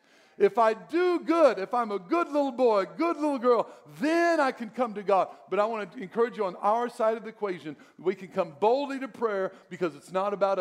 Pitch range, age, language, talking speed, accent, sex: 180-240 Hz, 50-69, English, 230 wpm, American, male